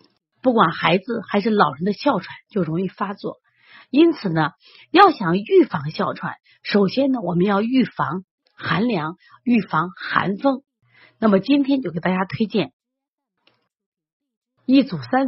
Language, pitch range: Chinese, 175-270 Hz